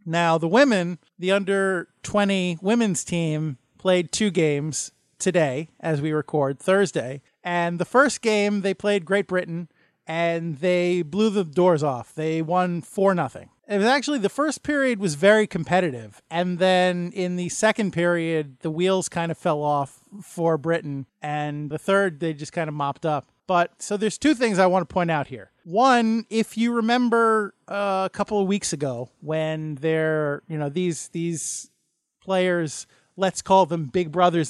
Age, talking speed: 30-49, 170 wpm